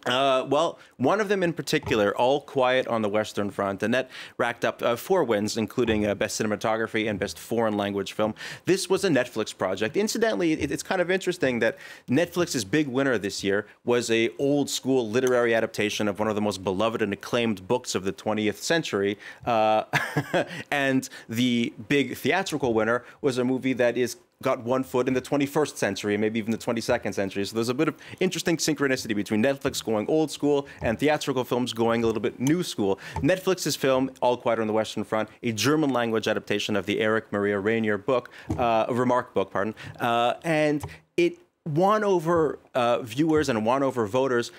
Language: English